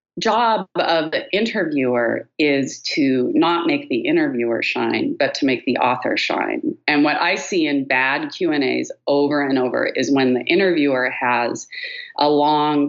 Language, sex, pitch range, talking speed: English, female, 140-225 Hz, 160 wpm